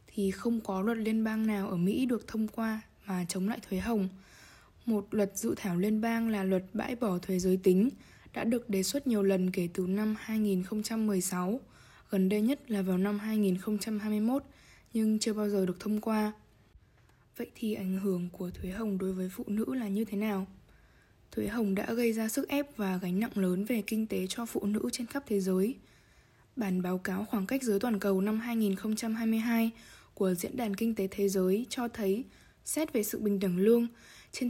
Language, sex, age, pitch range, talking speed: Vietnamese, female, 10-29, 190-230 Hz, 200 wpm